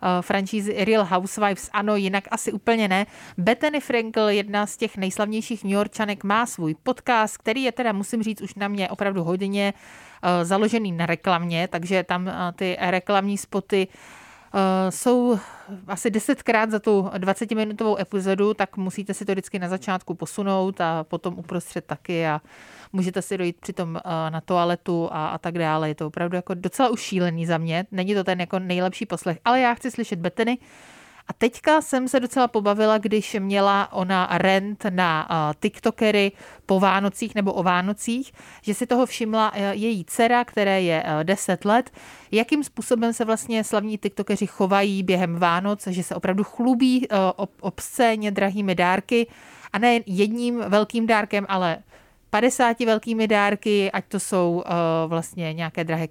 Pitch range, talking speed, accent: 185-220 Hz, 160 wpm, native